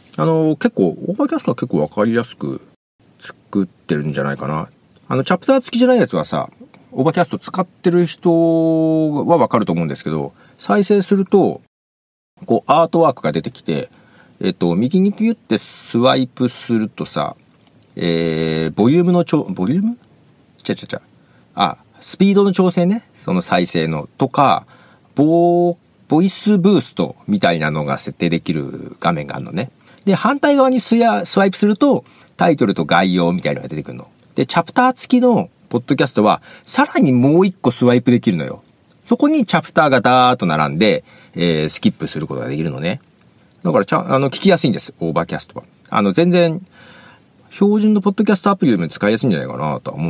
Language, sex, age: Japanese, male, 40-59